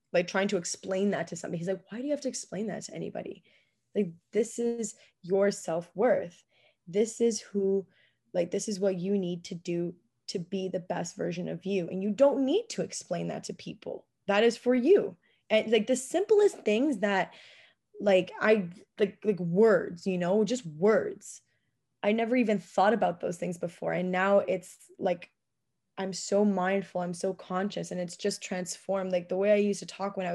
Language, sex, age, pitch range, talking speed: English, female, 20-39, 180-220 Hz, 200 wpm